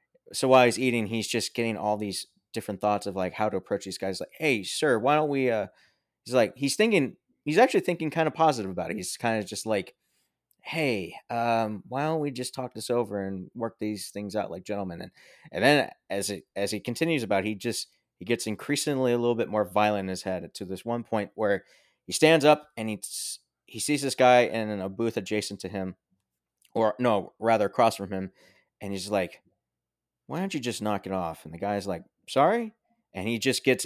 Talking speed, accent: 225 wpm, American